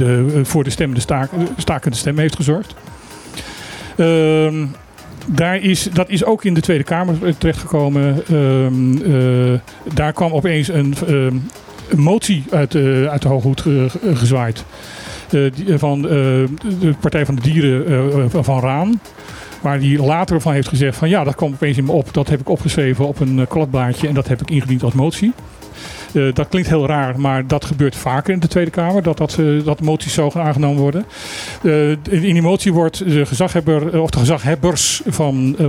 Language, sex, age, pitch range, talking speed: Dutch, male, 40-59, 135-165 Hz, 190 wpm